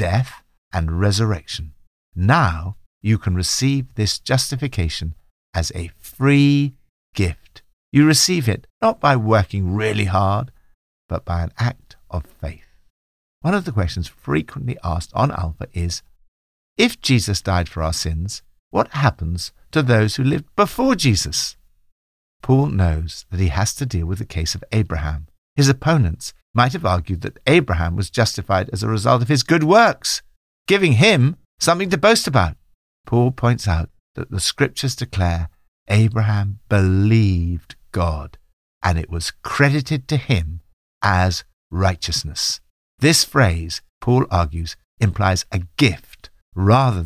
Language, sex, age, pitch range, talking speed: English, male, 60-79, 85-125 Hz, 140 wpm